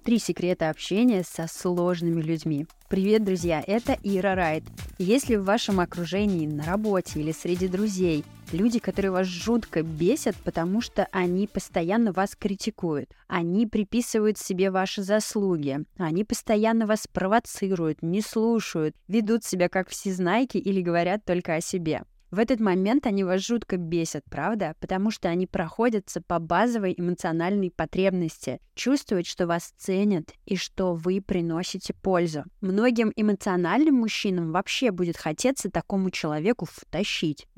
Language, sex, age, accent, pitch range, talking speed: Russian, female, 20-39, native, 175-215 Hz, 135 wpm